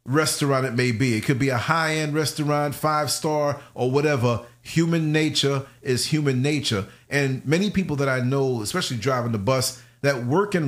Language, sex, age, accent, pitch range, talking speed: English, male, 40-59, American, 125-170 Hz, 175 wpm